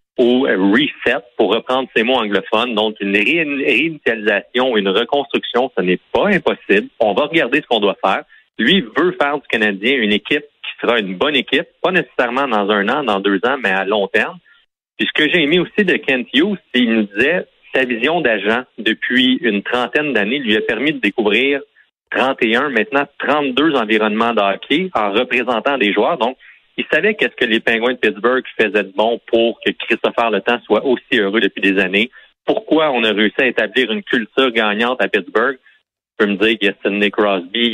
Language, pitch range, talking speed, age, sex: French, 100-135 Hz, 195 wpm, 40-59, male